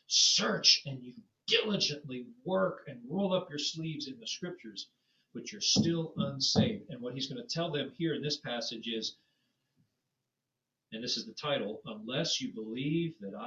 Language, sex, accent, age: English, male, American, 40-59